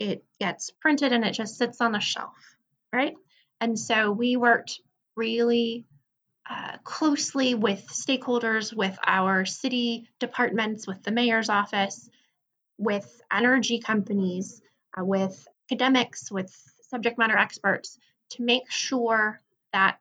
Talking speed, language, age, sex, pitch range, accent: 125 wpm, English, 20-39, female, 200-245 Hz, American